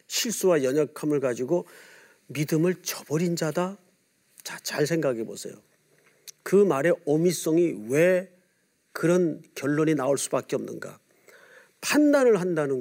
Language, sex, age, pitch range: Korean, male, 40-59, 170-235 Hz